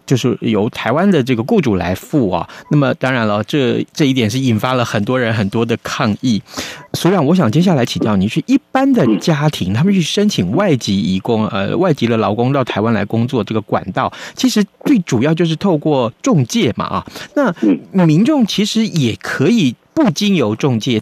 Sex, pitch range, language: male, 115-190 Hz, Chinese